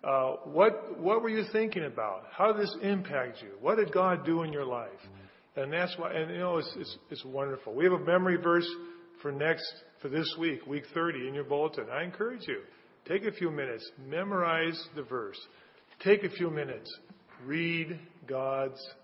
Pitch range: 130-165 Hz